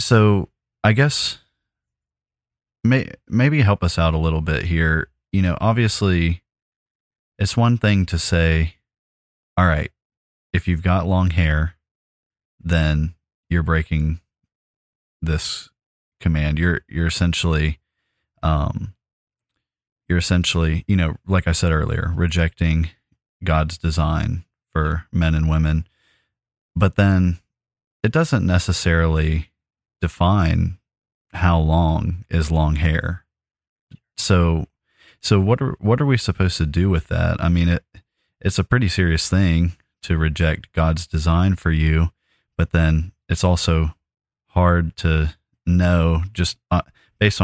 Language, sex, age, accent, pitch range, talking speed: English, male, 30-49, American, 80-95 Hz, 125 wpm